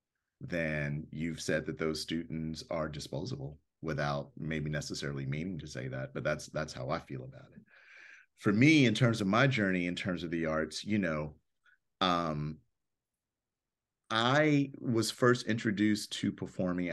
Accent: American